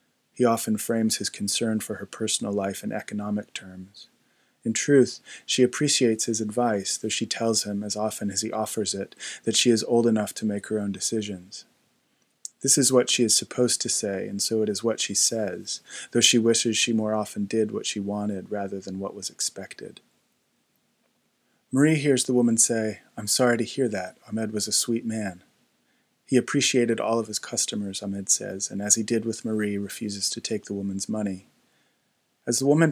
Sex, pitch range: male, 105-120 Hz